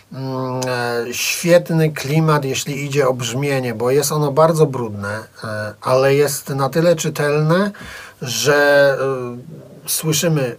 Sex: male